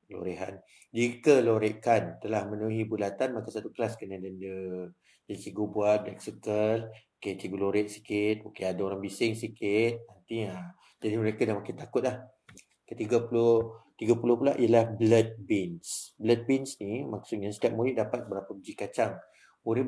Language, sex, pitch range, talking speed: Malay, male, 105-125 Hz, 145 wpm